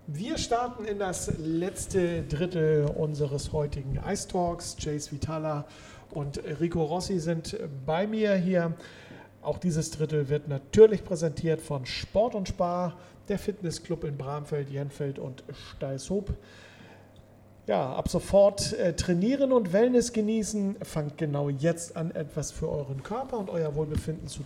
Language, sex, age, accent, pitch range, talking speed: German, male, 40-59, German, 145-180 Hz, 135 wpm